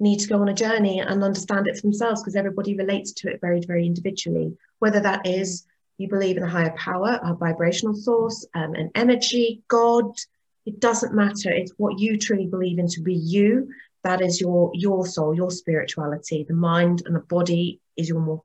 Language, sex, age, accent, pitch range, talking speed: English, female, 30-49, British, 170-205 Hz, 200 wpm